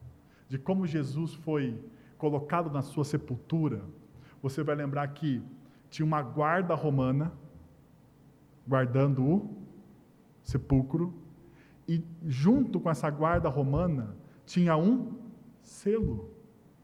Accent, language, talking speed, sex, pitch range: Brazilian, Portuguese, 100 wpm, male, 145-215 Hz